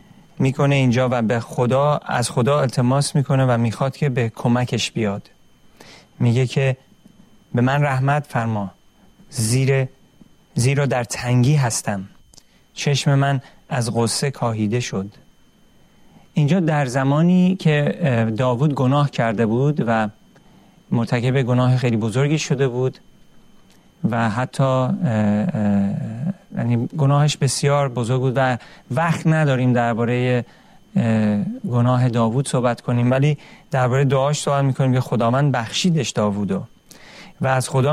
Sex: male